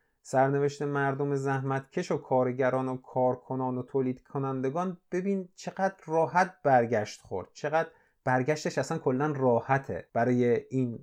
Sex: male